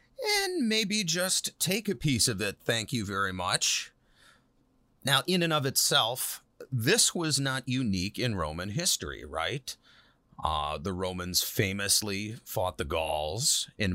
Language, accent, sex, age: English, American, male, 30-49